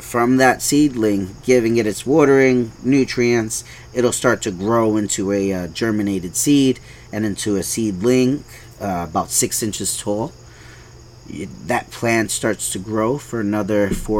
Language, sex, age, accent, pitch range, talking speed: English, male, 30-49, American, 95-115 Hz, 145 wpm